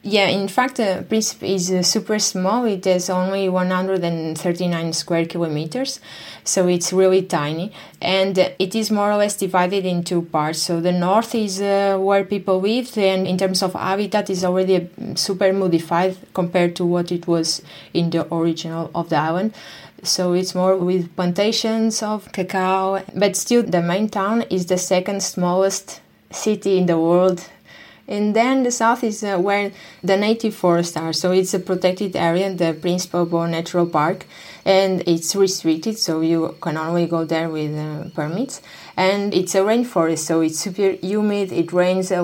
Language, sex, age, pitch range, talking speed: English, female, 20-39, 175-195 Hz, 170 wpm